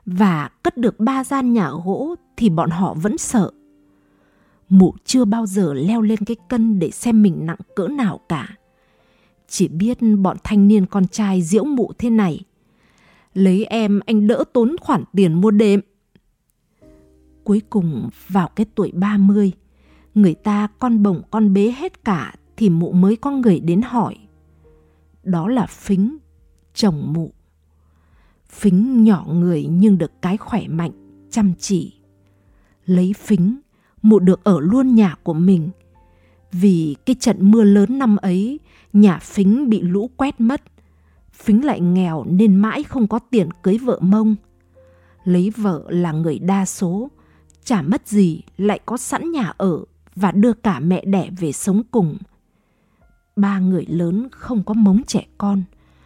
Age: 20-39